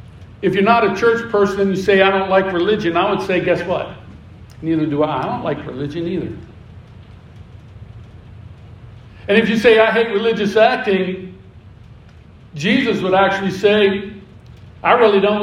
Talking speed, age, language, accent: 160 wpm, 60-79, English, American